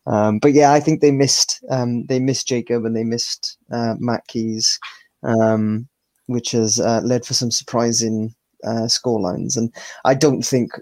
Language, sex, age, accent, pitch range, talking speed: English, male, 20-39, British, 115-125 Hz, 170 wpm